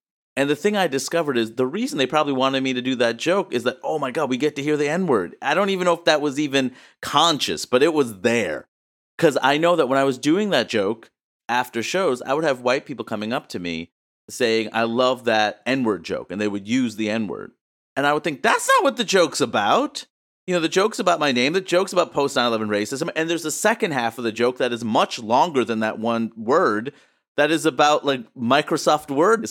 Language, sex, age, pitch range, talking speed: English, male, 30-49, 115-165 Hz, 240 wpm